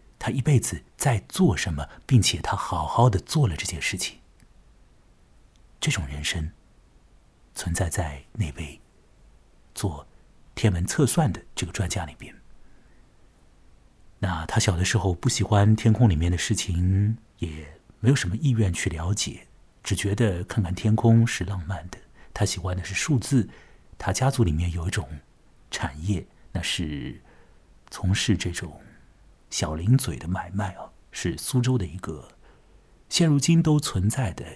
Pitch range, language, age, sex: 85-115 Hz, Chinese, 50-69, male